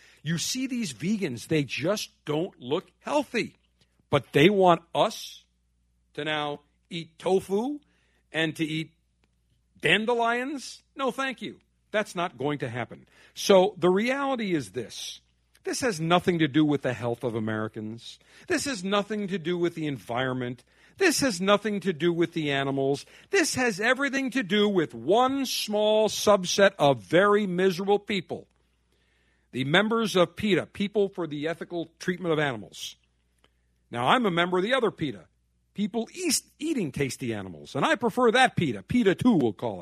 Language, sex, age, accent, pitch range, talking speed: English, male, 50-69, American, 145-220 Hz, 160 wpm